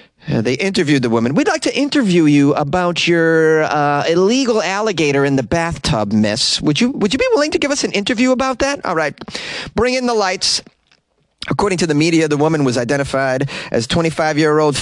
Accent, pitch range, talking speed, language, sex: American, 125-190 Hz, 195 wpm, English, male